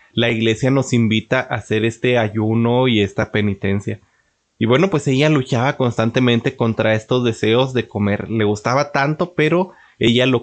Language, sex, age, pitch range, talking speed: Spanish, male, 30-49, 115-140 Hz, 160 wpm